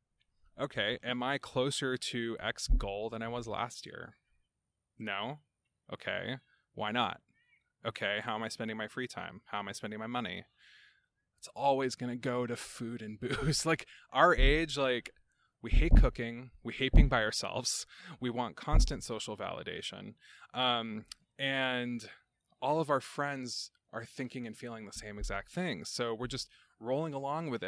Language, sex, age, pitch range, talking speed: English, male, 20-39, 110-140 Hz, 165 wpm